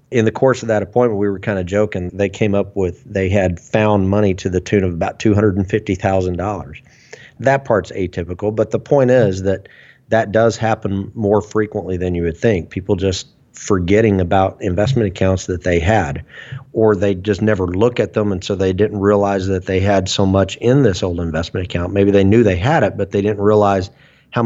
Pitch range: 95-110 Hz